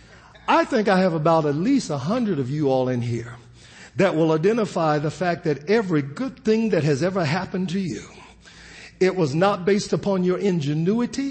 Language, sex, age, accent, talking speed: English, male, 50-69, American, 190 wpm